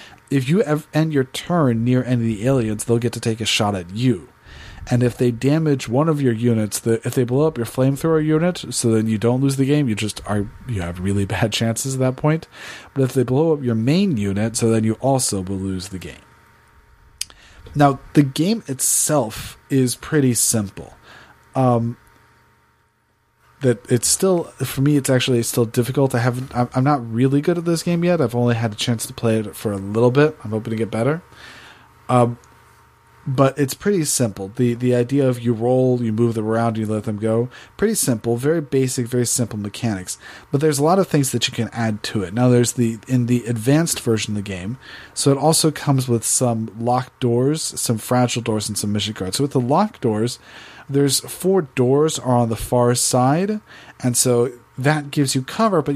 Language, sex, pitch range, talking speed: English, male, 115-140 Hz, 210 wpm